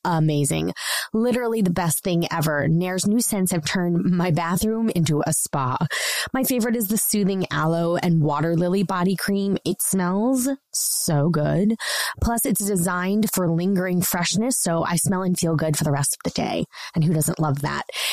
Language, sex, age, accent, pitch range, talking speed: English, female, 20-39, American, 160-200 Hz, 180 wpm